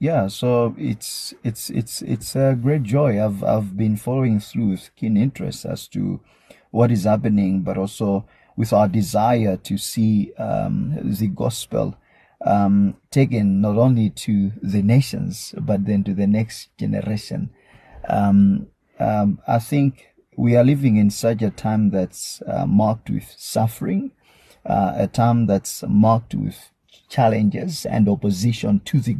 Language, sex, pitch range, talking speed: English, male, 100-120 Hz, 150 wpm